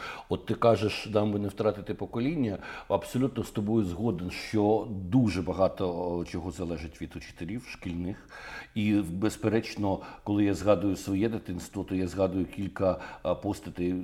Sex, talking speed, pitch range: male, 135 wpm, 95-115 Hz